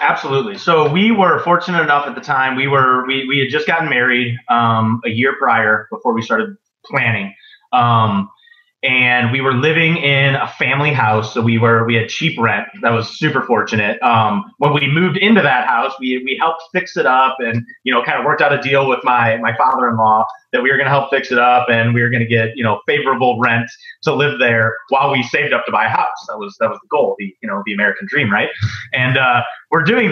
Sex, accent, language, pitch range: male, American, English, 115-155 Hz